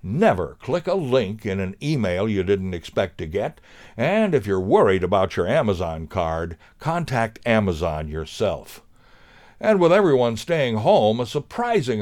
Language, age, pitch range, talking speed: English, 60-79, 90-150 Hz, 150 wpm